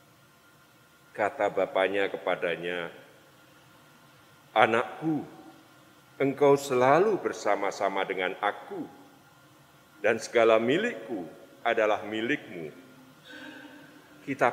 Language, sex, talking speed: Indonesian, male, 60 wpm